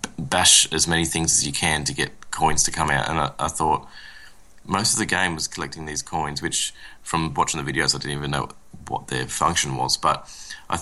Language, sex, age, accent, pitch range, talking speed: English, male, 30-49, Australian, 70-85 Hz, 220 wpm